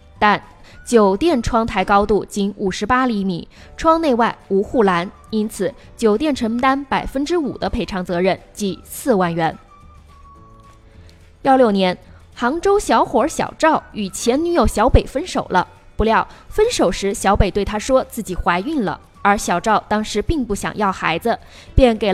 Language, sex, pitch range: Chinese, female, 190-255 Hz